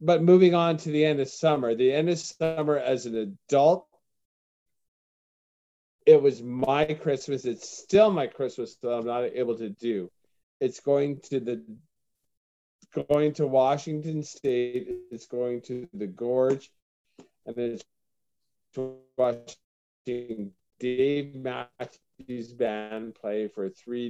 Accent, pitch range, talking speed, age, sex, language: American, 110-140 Hz, 130 wpm, 40-59, male, English